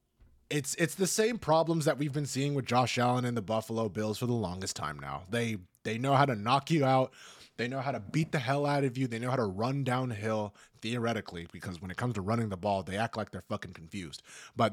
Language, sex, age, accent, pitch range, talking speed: English, male, 20-39, American, 100-140 Hz, 250 wpm